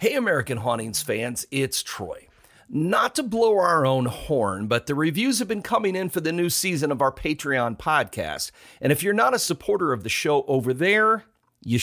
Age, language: 40-59, English